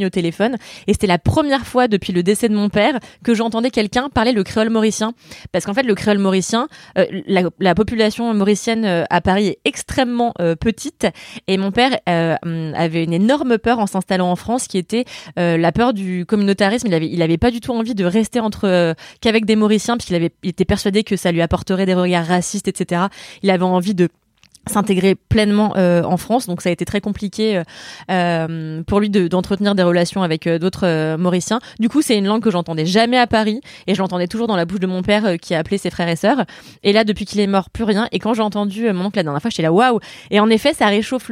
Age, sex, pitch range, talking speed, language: 20-39, female, 180-225 Hz, 240 wpm, French